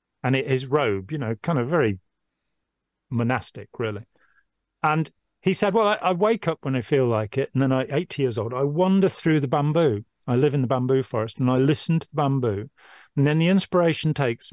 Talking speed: 210 wpm